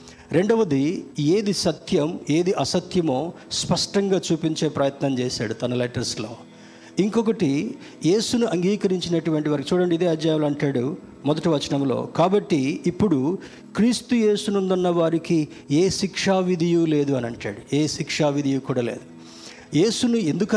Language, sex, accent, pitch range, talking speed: Telugu, male, native, 145-190 Hz, 110 wpm